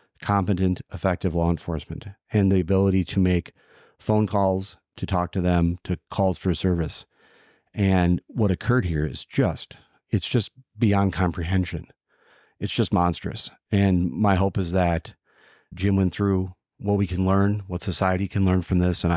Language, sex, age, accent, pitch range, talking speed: English, male, 40-59, American, 90-100 Hz, 160 wpm